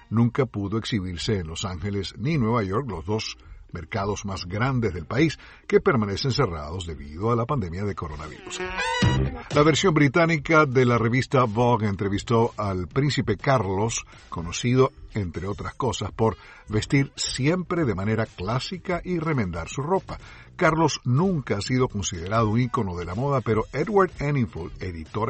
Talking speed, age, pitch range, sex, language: 150 wpm, 60-79, 100-135 Hz, male, Spanish